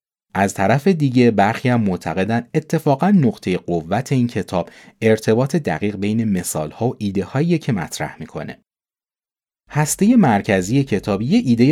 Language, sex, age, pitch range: Persian, male, 30-49, 90-135 Hz